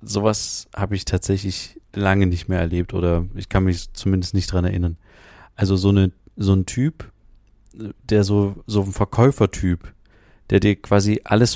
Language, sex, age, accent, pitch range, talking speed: German, male, 30-49, German, 95-110 Hz, 160 wpm